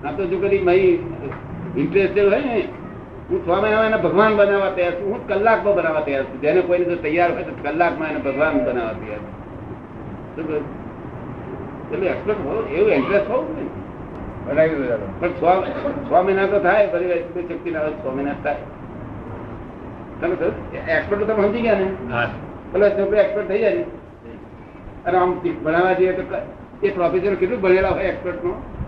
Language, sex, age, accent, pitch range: Gujarati, male, 60-79, native, 175-230 Hz